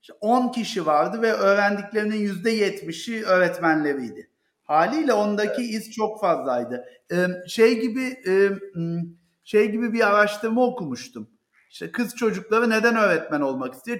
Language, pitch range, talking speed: Turkish, 190-235 Hz, 115 wpm